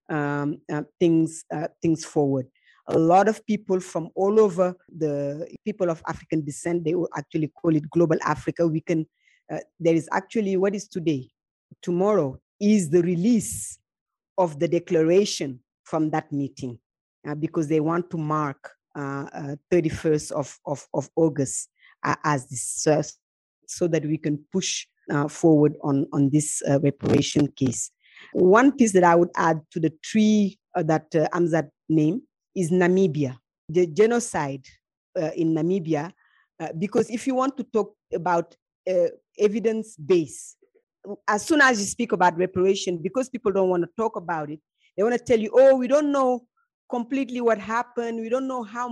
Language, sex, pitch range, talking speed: English, female, 155-220 Hz, 165 wpm